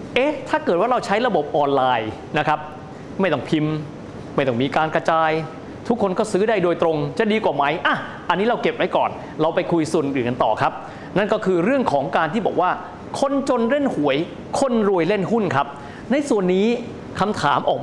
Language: Thai